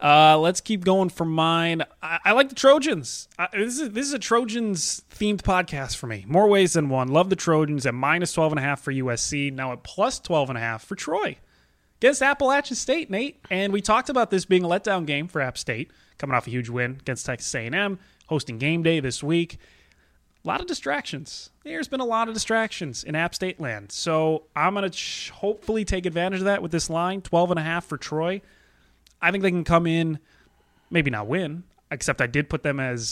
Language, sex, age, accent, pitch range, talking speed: English, male, 20-39, American, 130-190 Hz, 225 wpm